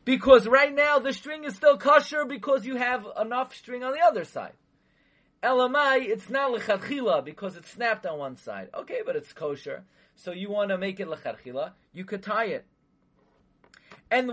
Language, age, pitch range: English, 30-49, 165-245 Hz